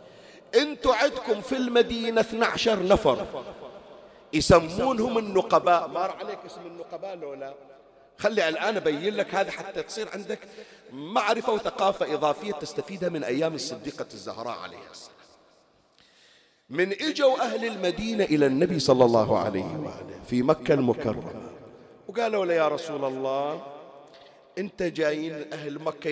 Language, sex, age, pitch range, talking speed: Arabic, male, 40-59, 150-210 Hz, 120 wpm